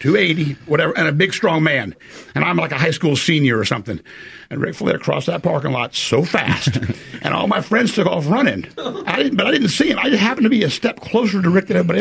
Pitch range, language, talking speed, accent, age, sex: 140-205 Hz, English, 240 wpm, American, 60-79, male